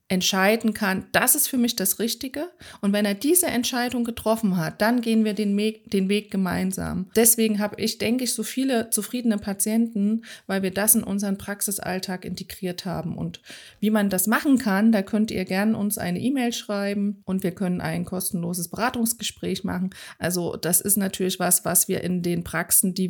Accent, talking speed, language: German, 185 wpm, German